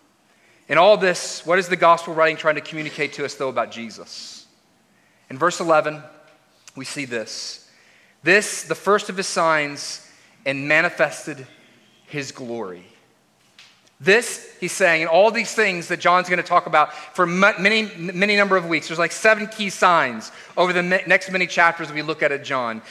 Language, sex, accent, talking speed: English, male, American, 175 wpm